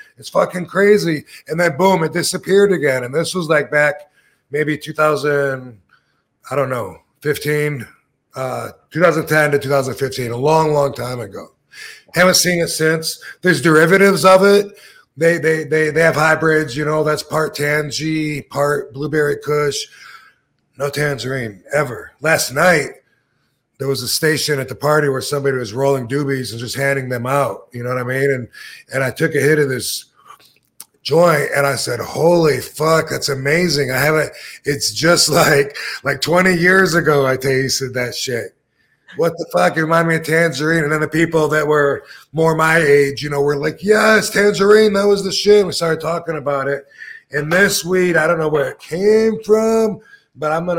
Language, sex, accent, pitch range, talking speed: English, male, American, 140-170 Hz, 180 wpm